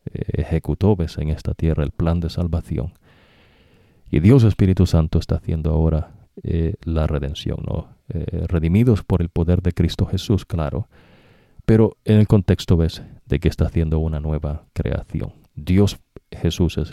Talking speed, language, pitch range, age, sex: 150 wpm, English, 80-100 Hz, 40-59, male